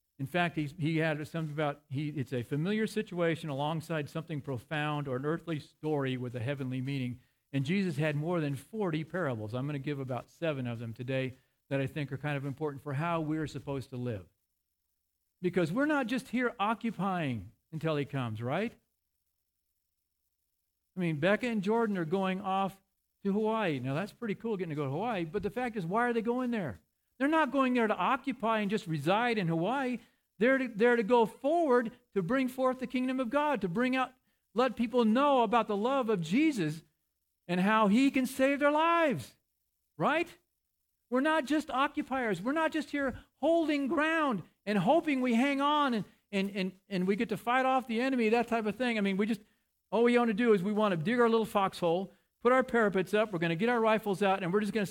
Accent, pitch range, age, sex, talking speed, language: American, 145-240 Hz, 50-69, male, 210 wpm, English